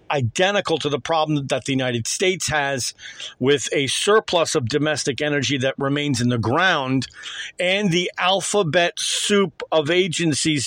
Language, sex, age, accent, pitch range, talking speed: English, male, 50-69, American, 150-185 Hz, 145 wpm